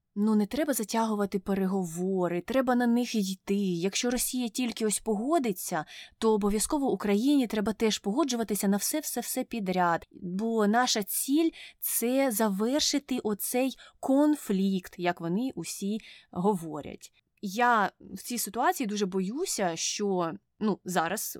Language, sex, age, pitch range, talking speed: Ukrainian, female, 20-39, 185-240 Hz, 125 wpm